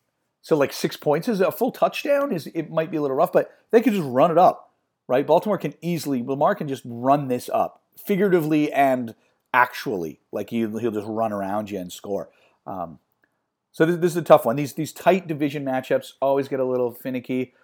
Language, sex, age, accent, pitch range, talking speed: English, male, 40-59, American, 110-150 Hz, 210 wpm